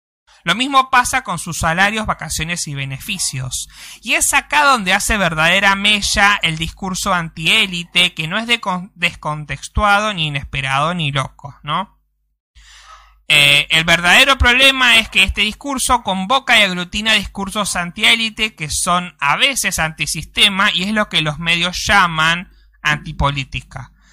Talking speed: 130 wpm